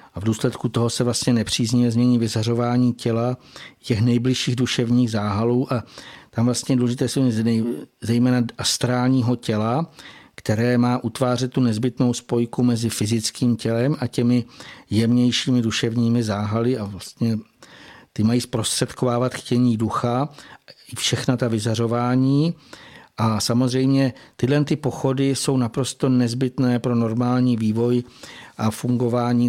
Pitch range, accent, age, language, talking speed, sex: 115-125 Hz, native, 60-79, Czech, 120 wpm, male